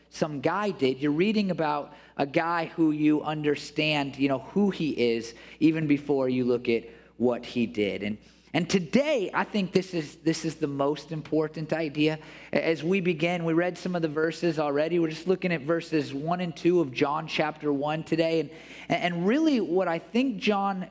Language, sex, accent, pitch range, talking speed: English, male, American, 140-175 Hz, 190 wpm